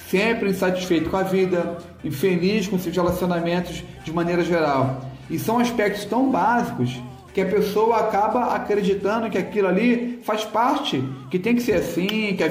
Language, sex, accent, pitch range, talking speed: Portuguese, male, Brazilian, 175-210 Hz, 165 wpm